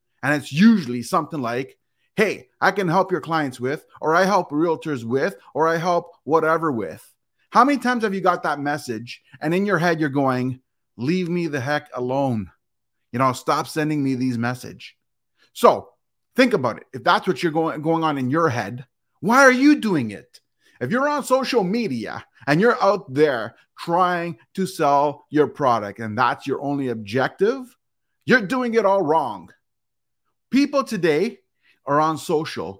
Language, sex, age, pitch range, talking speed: English, male, 30-49, 130-185 Hz, 175 wpm